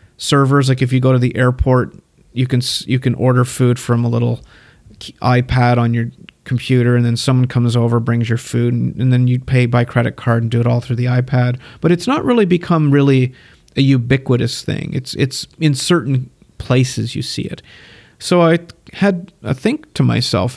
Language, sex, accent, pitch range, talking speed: English, male, American, 120-140 Hz, 200 wpm